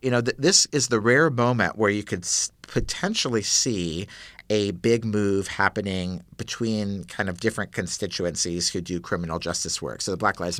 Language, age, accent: English, 50-69, American